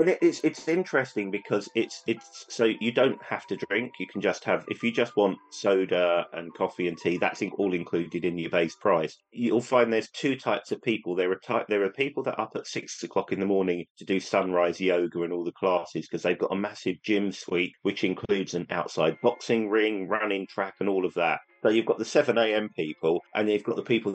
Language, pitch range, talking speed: English, 95-120 Hz, 235 wpm